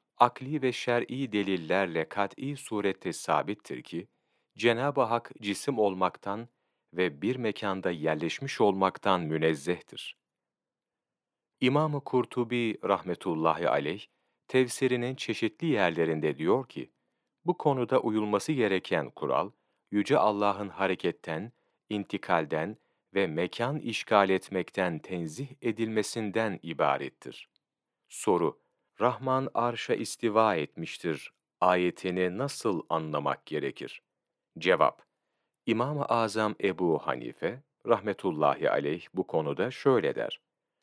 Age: 40-59